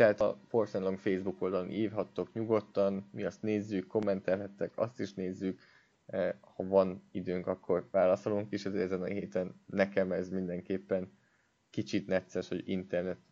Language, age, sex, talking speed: Hungarian, 20-39, male, 140 wpm